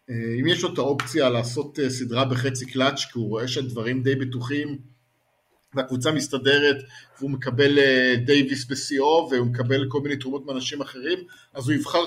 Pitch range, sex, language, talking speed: 125-155 Hz, male, English, 155 wpm